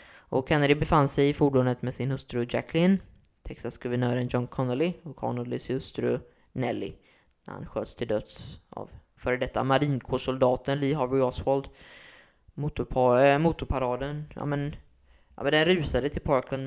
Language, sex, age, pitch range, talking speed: Swedish, female, 20-39, 120-140 Hz, 135 wpm